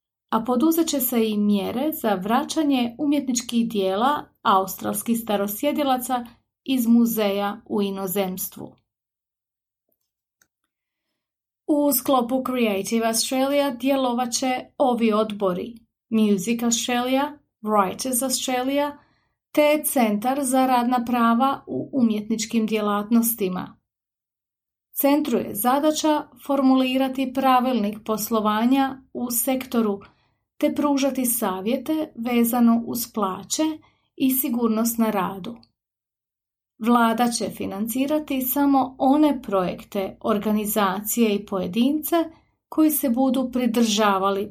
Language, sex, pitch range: Croatian, female, 210-265 Hz